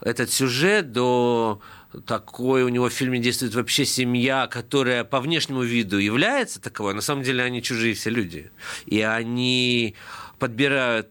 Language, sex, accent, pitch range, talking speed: Russian, male, native, 105-140 Hz, 145 wpm